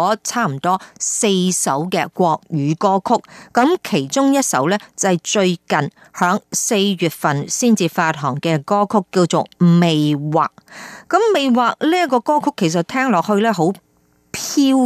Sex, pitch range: female, 165-220 Hz